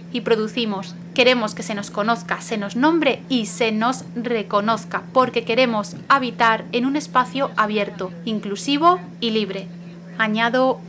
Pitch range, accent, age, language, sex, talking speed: 205-255 Hz, Spanish, 30-49, Spanish, female, 140 wpm